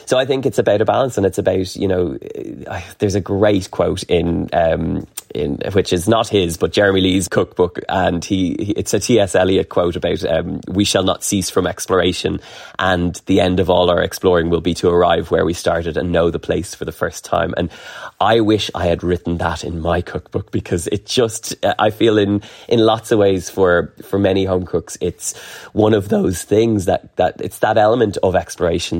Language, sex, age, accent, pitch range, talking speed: English, male, 20-39, Irish, 85-100 Hz, 215 wpm